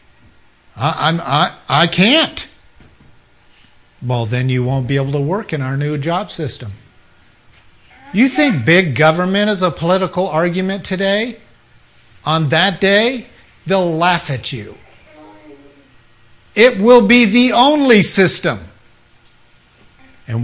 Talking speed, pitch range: 115 wpm, 125-195 Hz